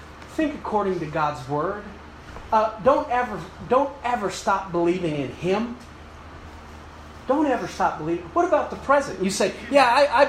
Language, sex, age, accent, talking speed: English, male, 30-49, American, 150 wpm